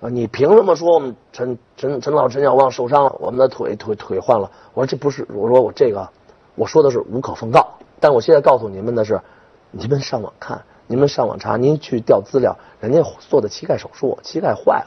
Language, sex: Chinese, male